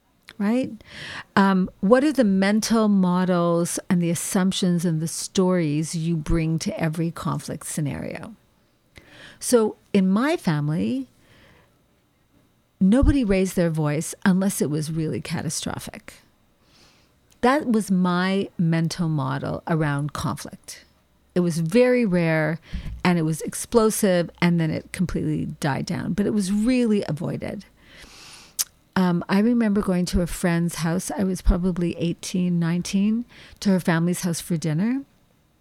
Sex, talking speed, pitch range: female, 130 wpm, 170-220 Hz